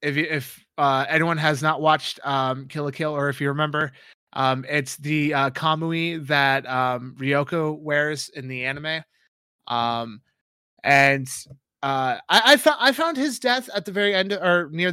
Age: 20-39